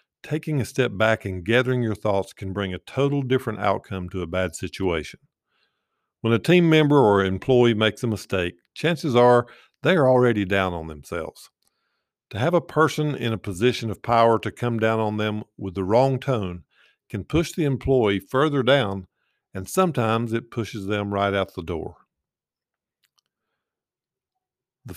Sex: male